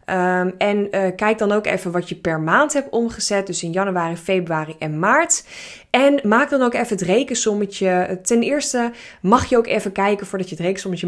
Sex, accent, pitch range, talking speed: female, Dutch, 180-225 Hz, 195 wpm